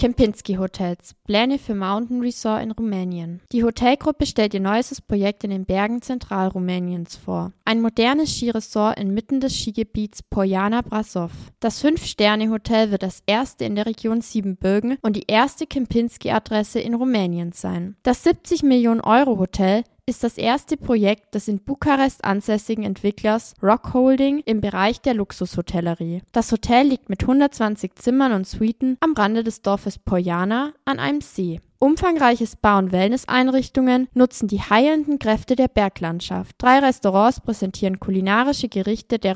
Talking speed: 145 wpm